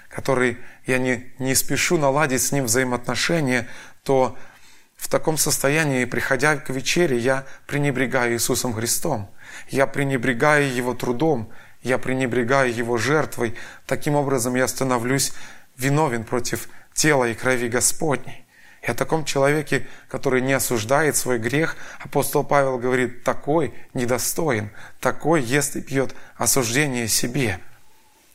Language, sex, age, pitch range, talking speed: Russian, male, 20-39, 125-145 Hz, 125 wpm